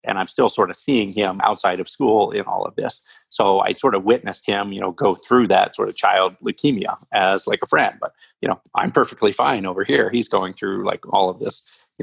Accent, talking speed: American, 245 wpm